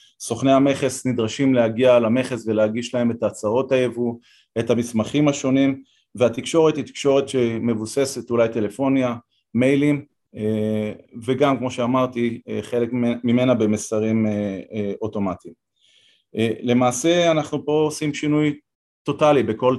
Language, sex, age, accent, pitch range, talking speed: Hebrew, male, 30-49, native, 115-135 Hz, 105 wpm